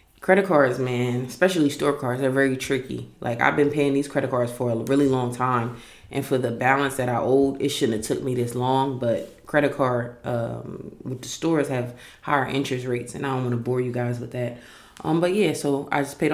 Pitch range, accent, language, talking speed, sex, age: 125-145 Hz, American, English, 230 wpm, female, 20-39